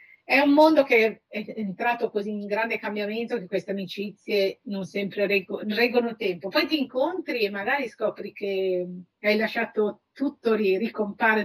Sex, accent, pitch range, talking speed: female, native, 190-230 Hz, 150 wpm